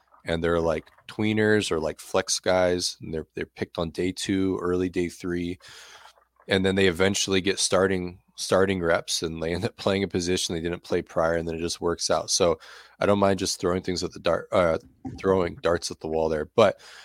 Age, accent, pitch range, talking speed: 20-39, American, 80-95 Hz, 215 wpm